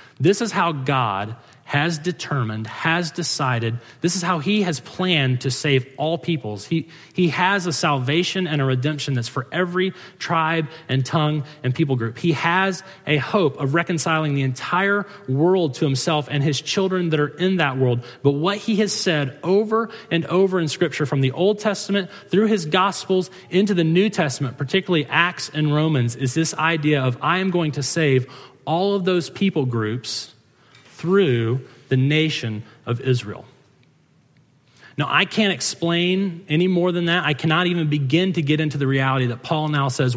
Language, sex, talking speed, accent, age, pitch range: English, male, 180 wpm, American, 30-49, 135-175 Hz